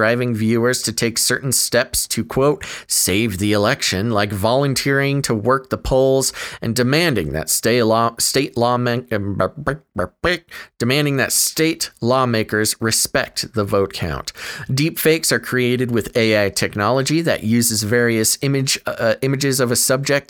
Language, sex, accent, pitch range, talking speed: English, male, American, 110-135 Hz, 140 wpm